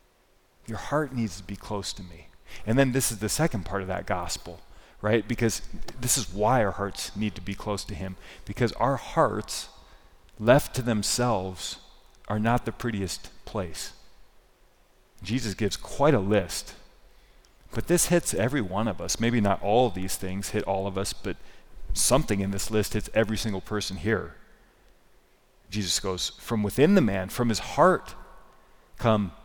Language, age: English, 40-59